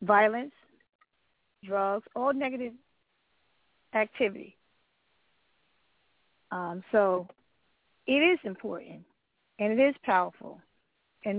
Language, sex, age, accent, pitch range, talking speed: English, female, 40-59, American, 195-240 Hz, 80 wpm